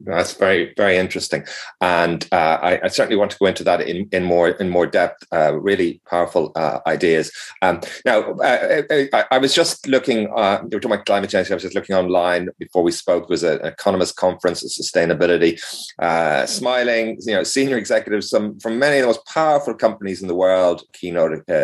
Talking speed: 200 wpm